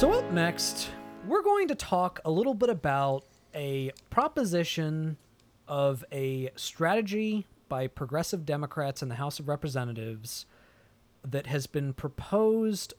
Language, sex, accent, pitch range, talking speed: English, male, American, 125-160 Hz, 130 wpm